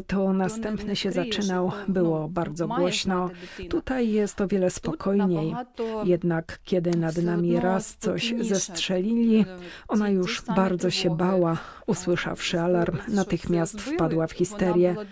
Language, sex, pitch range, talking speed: Polish, female, 175-215 Hz, 120 wpm